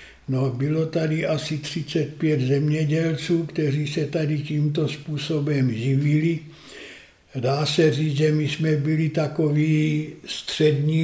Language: Czech